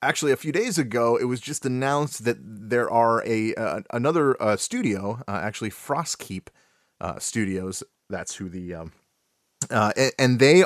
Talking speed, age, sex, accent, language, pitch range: 165 wpm, 30-49, male, American, English, 105-140 Hz